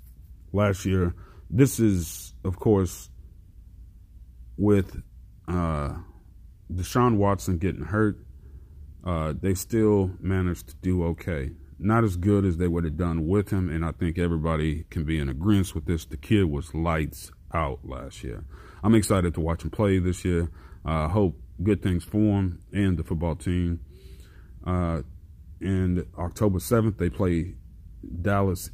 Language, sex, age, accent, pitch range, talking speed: English, male, 30-49, American, 80-95 Hz, 150 wpm